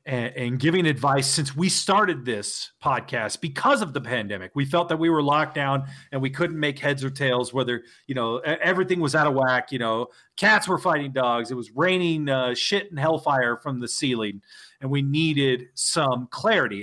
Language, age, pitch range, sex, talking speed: English, 40-59, 130-165 Hz, male, 200 wpm